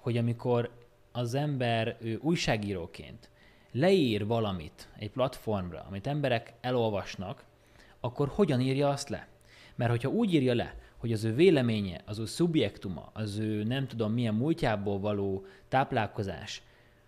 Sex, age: male, 30-49